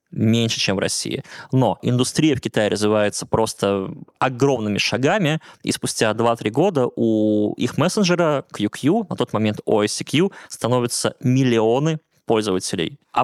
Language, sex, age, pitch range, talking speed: Russian, male, 20-39, 110-145 Hz, 125 wpm